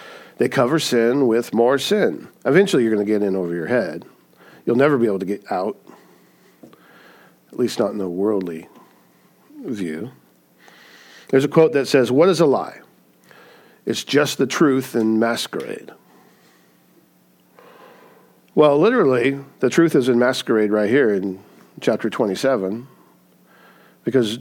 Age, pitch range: 50-69, 100-135 Hz